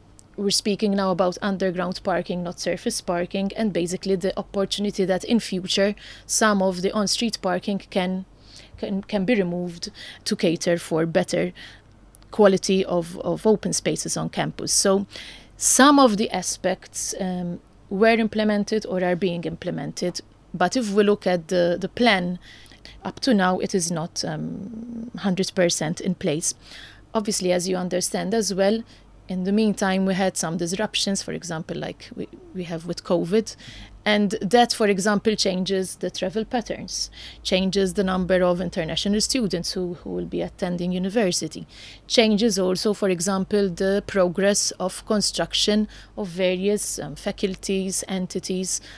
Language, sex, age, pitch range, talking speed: English, female, 30-49, 180-210 Hz, 150 wpm